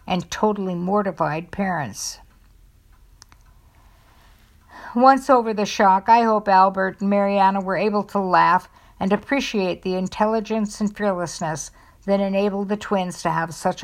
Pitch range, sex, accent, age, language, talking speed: 160-215 Hz, female, American, 60-79, English, 130 wpm